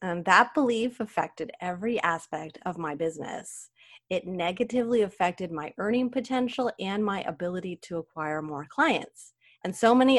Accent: American